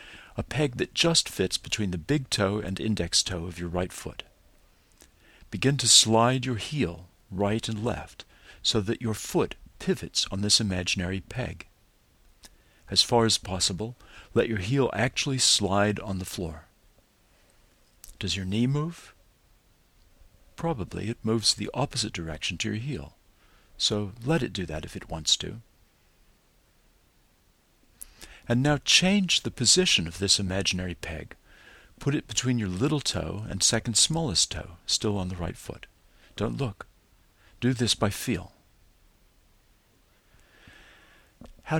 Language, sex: English, male